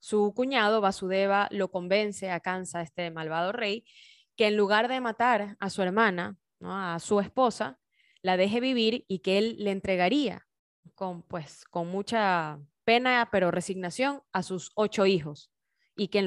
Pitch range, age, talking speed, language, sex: 180-215 Hz, 10-29, 160 wpm, Spanish, female